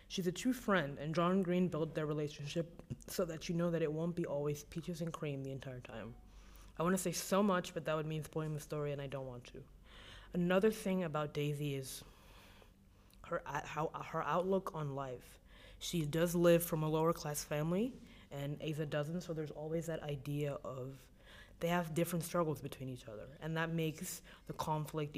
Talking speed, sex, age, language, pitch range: 200 wpm, female, 20-39, English, 140-170 Hz